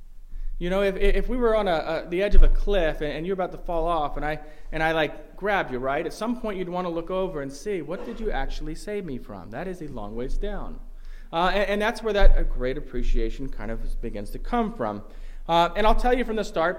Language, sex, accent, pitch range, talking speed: English, male, American, 135-190 Hz, 270 wpm